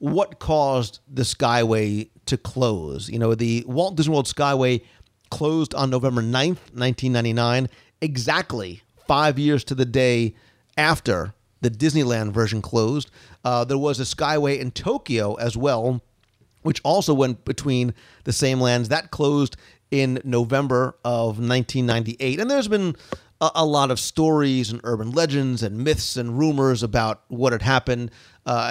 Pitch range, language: 115-145 Hz, English